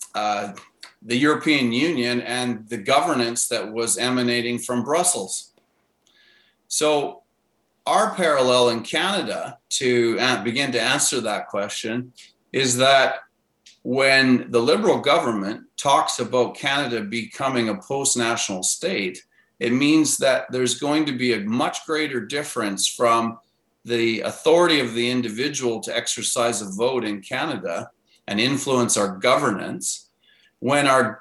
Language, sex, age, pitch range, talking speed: English, male, 40-59, 115-130 Hz, 125 wpm